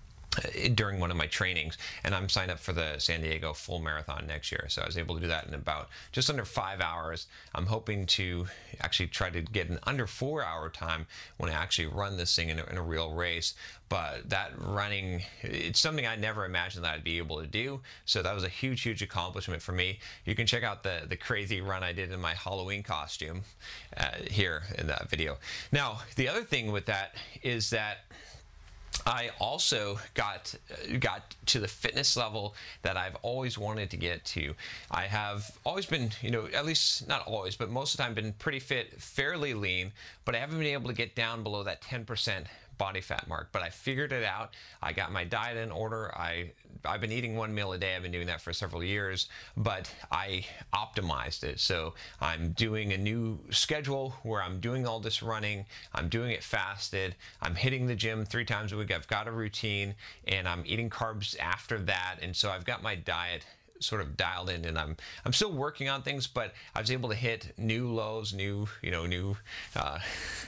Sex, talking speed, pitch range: male, 210 wpm, 85-115 Hz